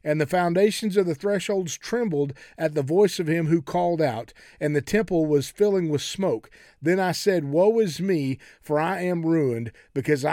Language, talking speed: English, 190 wpm